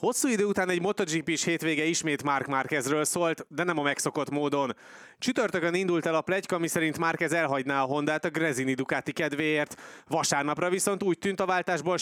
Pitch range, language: 140-175 Hz, Hungarian